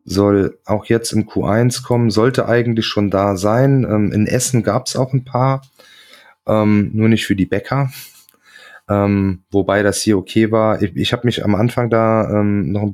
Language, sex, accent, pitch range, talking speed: German, male, German, 100-115 Hz, 190 wpm